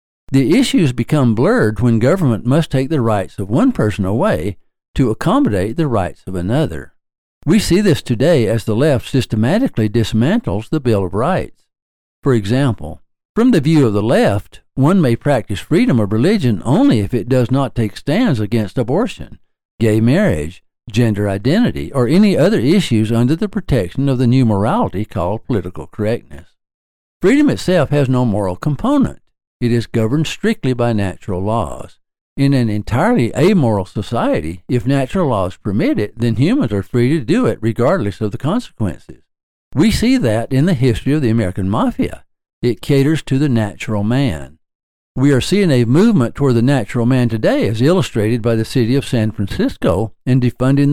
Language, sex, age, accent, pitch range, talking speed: English, male, 60-79, American, 110-140 Hz, 170 wpm